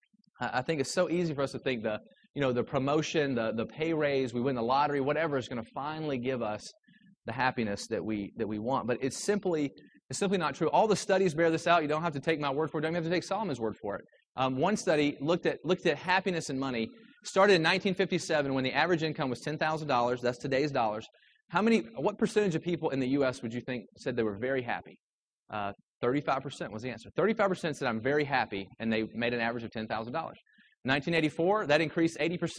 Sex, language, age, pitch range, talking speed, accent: male, English, 30-49, 120-170 Hz, 230 wpm, American